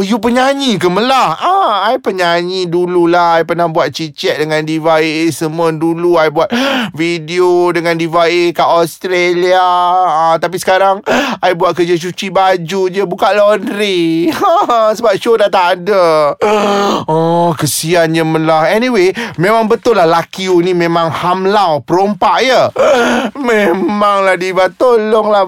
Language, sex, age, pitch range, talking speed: Malay, male, 30-49, 170-225 Hz, 150 wpm